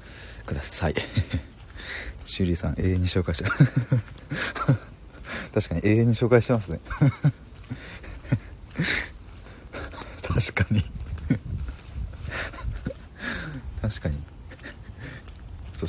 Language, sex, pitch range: Japanese, male, 80-105 Hz